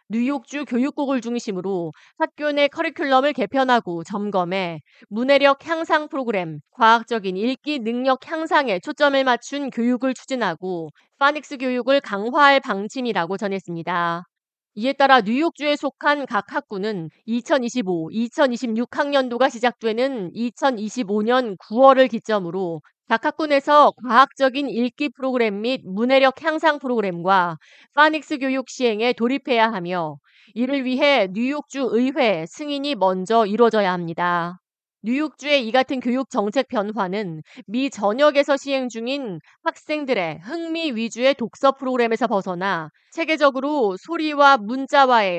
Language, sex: Korean, female